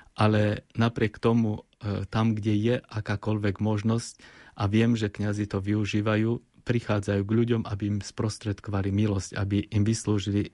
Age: 30-49